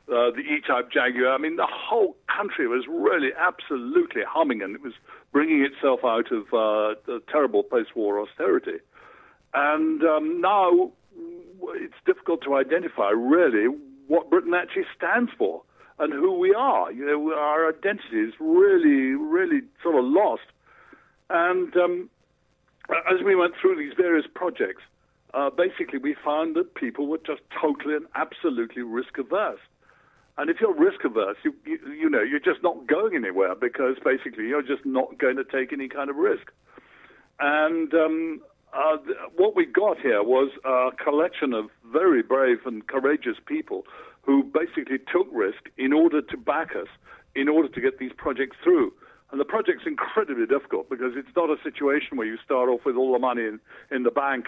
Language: English